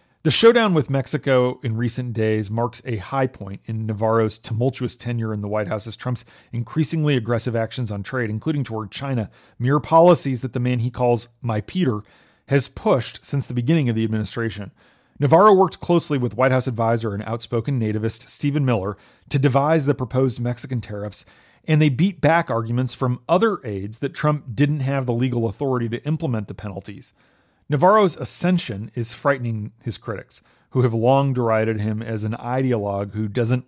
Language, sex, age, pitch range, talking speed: English, male, 40-59, 115-145 Hz, 175 wpm